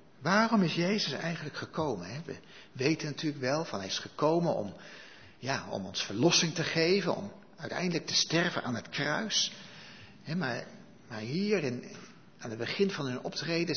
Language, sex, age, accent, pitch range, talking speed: Dutch, male, 60-79, Dutch, 135-185 Hz, 160 wpm